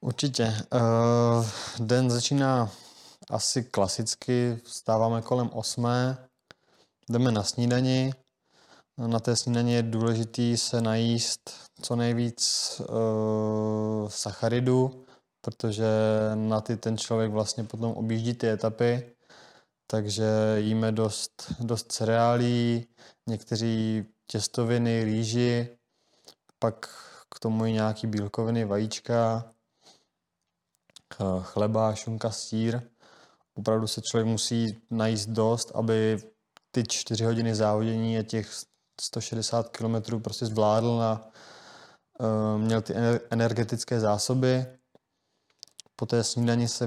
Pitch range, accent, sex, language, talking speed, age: 110-120 Hz, native, male, Czech, 95 wpm, 20-39